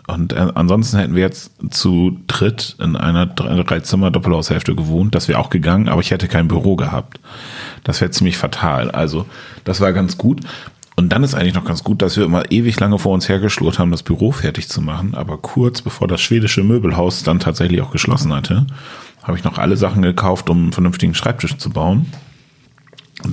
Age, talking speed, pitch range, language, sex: 40-59, 200 wpm, 85-105 Hz, German, male